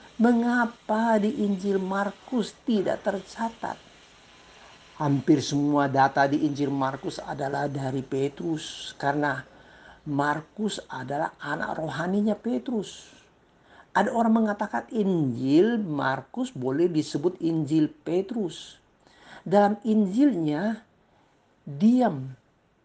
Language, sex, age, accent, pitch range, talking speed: Indonesian, male, 50-69, native, 150-220 Hz, 85 wpm